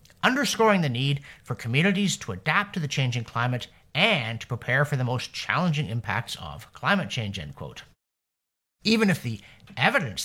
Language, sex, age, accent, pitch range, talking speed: English, male, 50-69, American, 115-185 Hz, 165 wpm